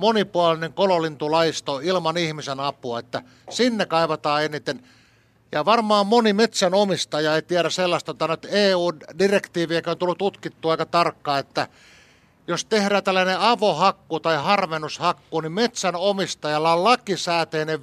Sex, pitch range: male, 160-200 Hz